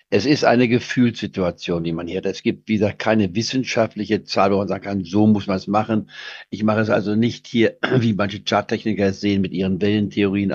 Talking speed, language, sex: 210 wpm, German, male